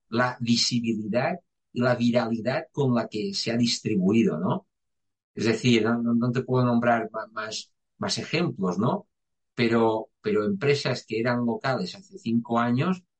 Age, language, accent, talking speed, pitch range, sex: 50-69, Spanish, Spanish, 150 wpm, 115-195 Hz, male